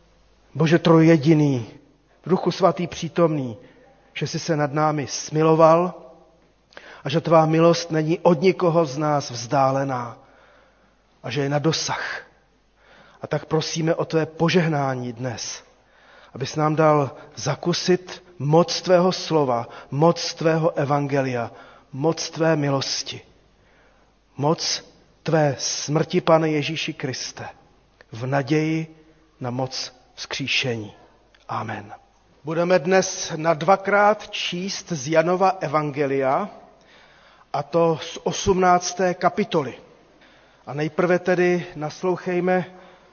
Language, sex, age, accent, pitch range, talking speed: Czech, male, 40-59, native, 145-180 Hz, 105 wpm